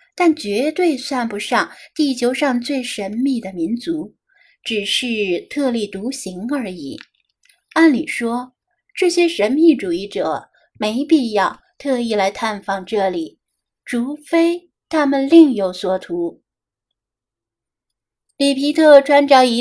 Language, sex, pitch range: Chinese, female, 210-295 Hz